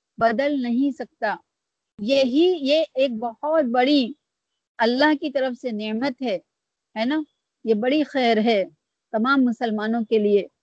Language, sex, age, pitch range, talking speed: Urdu, female, 50-69, 230-300 Hz, 140 wpm